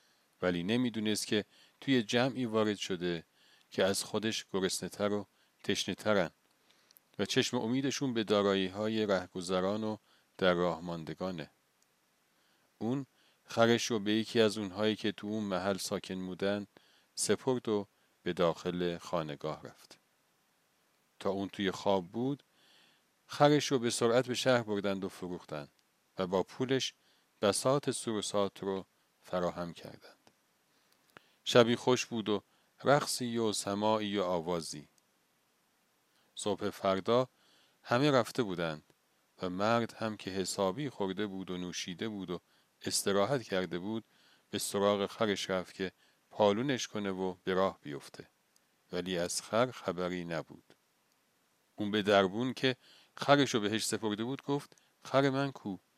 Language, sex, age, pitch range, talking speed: Persian, male, 40-59, 95-120 Hz, 130 wpm